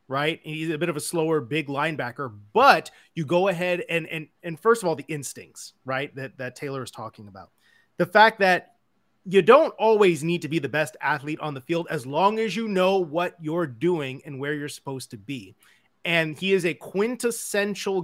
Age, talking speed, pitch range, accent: 30-49, 205 wpm, 140-175 Hz, American